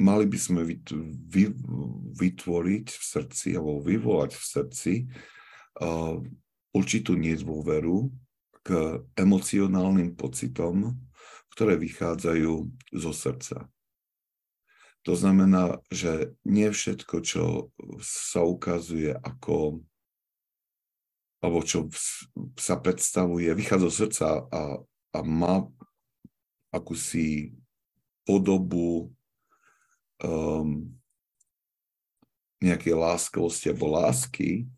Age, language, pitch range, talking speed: 50-69, Slovak, 80-95 Hz, 80 wpm